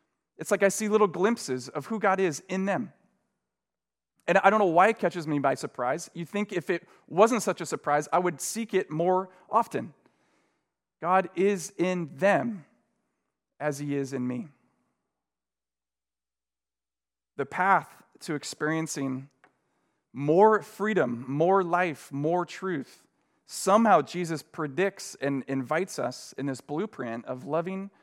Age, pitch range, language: 40-59, 135-185 Hz, English